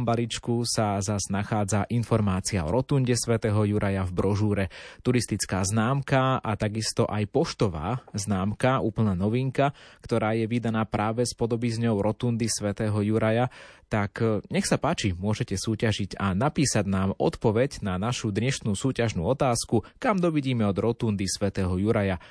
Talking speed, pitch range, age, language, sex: 140 wpm, 100-125 Hz, 20-39, Slovak, male